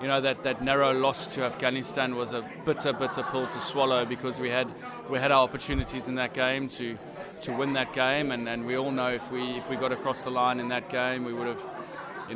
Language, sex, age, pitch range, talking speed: English, male, 20-39, 120-135 Hz, 245 wpm